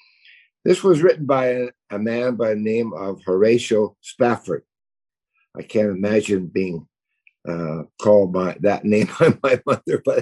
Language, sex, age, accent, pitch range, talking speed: English, male, 60-79, American, 115-150 Hz, 145 wpm